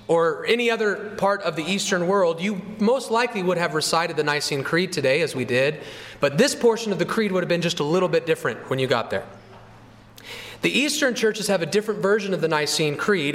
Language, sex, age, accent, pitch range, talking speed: English, male, 30-49, American, 155-215 Hz, 225 wpm